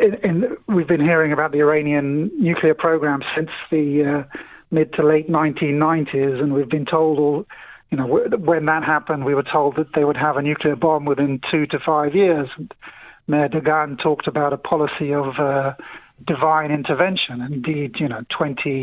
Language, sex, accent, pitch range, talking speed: English, male, British, 145-170 Hz, 170 wpm